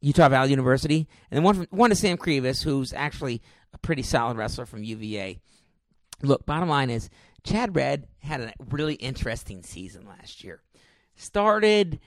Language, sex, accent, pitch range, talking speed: English, male, American, 115-150 Hz, 165 wpm